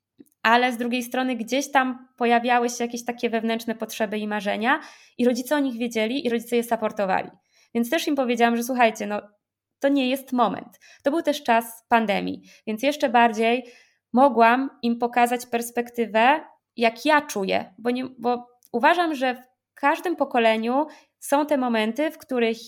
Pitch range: 225-280 Hz